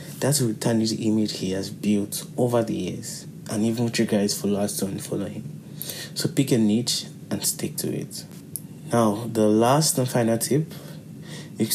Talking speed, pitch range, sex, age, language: 175 wpm, 105-130 Hz, male, 20-39, English